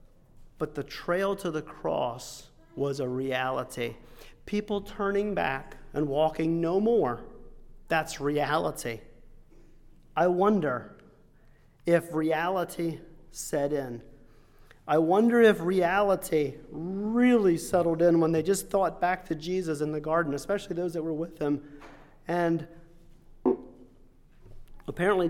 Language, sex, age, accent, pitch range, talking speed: English, male, 40-59, American, 150-190 Hz, 115 wpm